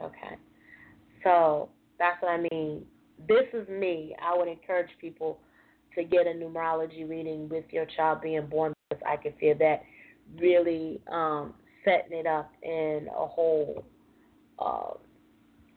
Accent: American